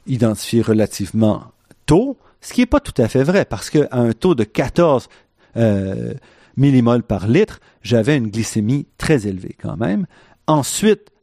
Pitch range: 110-165 Hz